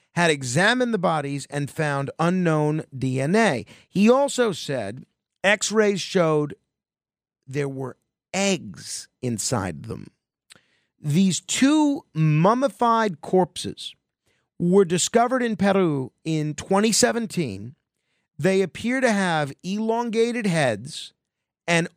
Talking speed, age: 95 wpm, 50-69